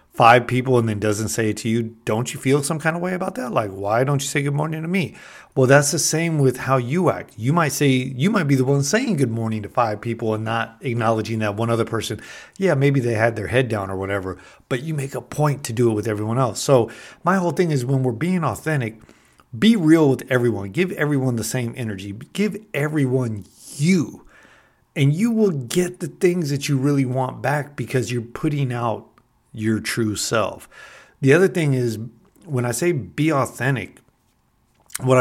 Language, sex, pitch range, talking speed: English, male, 110-145 Hz, 215 wpm